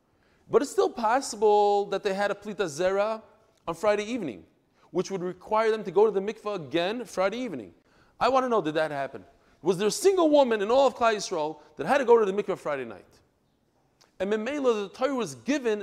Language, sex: English, male